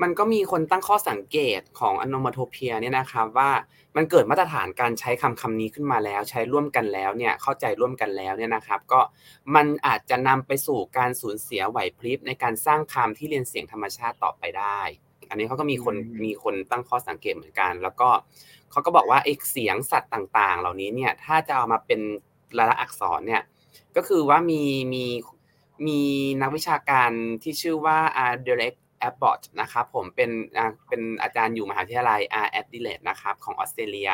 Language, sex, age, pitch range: Thai, male, 20-39, 120-165 Hz